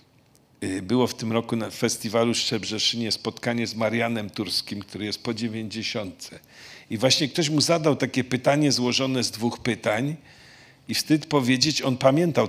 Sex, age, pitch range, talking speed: male, 50-69, 115-140 Hz, 155 wpm